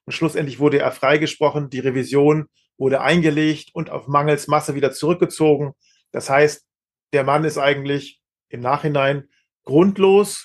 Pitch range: 145-175 Hz